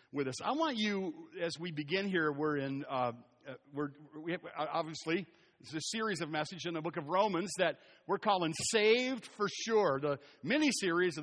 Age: 50-69